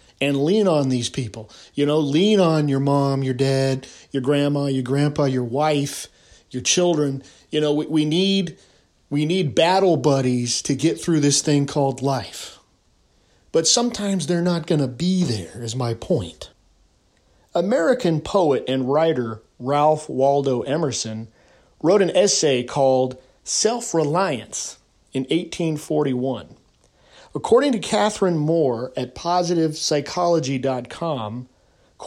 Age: 40-59